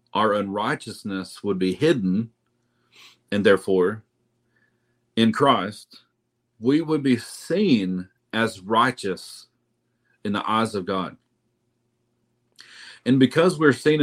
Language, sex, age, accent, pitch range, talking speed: English, male, 40-59, American, 110-130 Hz, 105 wpm